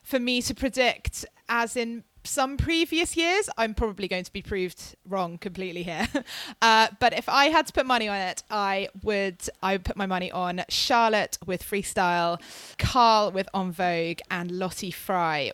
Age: 20-39